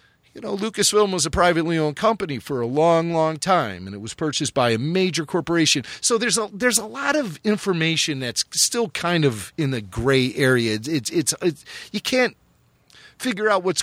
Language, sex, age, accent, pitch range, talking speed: English, male, 40-59, American, 125-195 Hz, 195 wpm